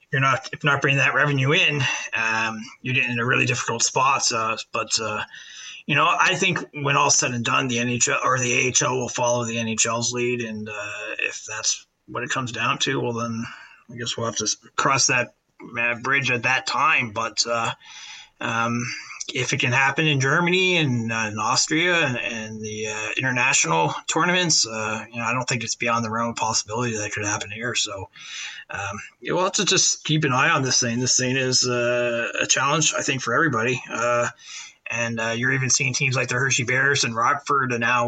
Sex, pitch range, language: male, 115-135 Hz, English